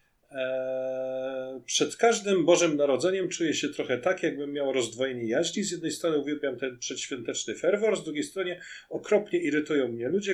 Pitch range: 135-180 Hz